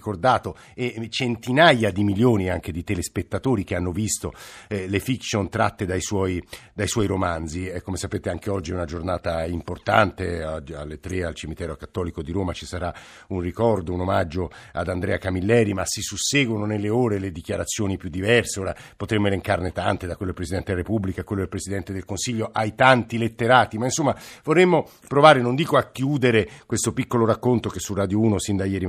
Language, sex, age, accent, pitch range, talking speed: Italian, male, 50-69, native, 95-120 Hz, 185 wpm